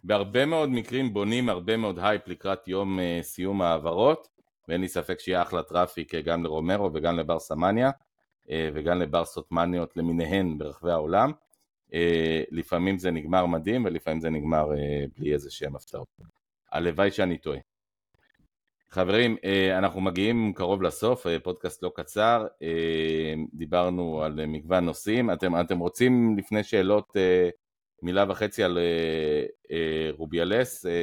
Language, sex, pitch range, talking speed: Hebrew, male, 80-95 Hz, 140 wpm